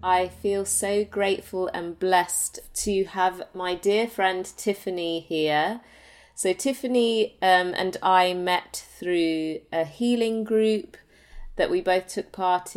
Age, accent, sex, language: 30-49, British, female, English